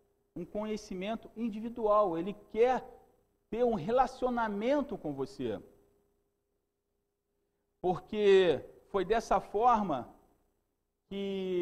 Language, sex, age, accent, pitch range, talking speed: Portuguese, male, 40-59, Brazilian, 185-235 Hz, 75 wpm